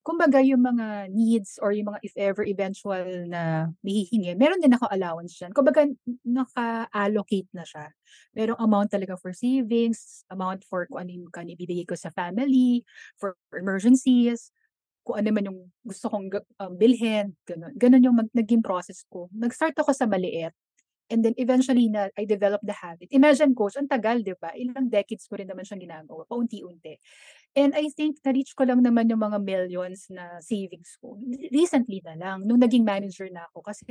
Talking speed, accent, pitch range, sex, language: 170 wpm, Filipino, 190-250 Hz, female, English